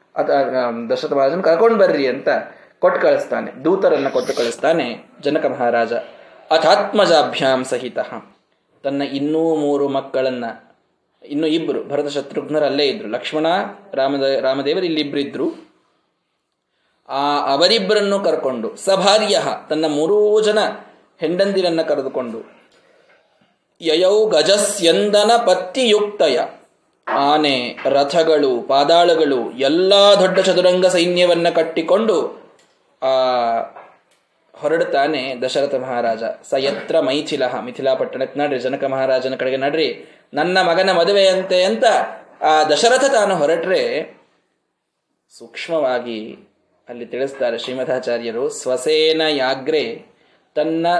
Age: 20-39